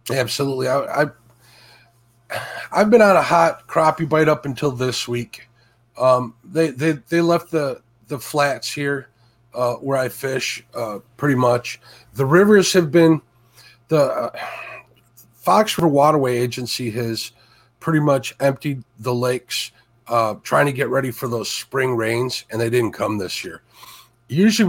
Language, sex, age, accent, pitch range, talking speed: English, male, 30-49, American, 115-145 Hz, 150 wpm